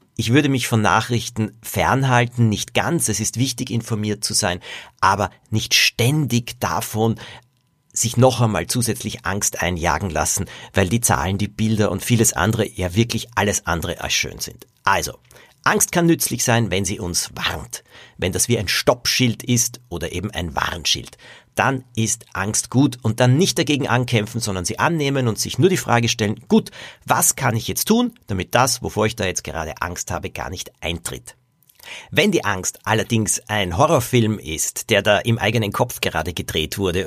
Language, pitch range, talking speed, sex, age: German, 100-125 Hz, 180 wpm, male, 50-69